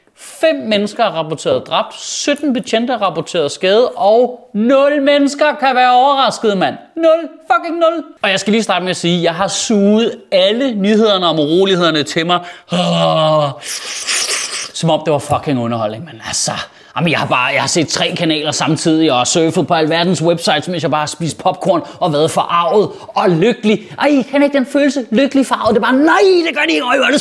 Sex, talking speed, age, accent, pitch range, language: male, 200 wpm, 30-49, native, 160-250 Hz, Danish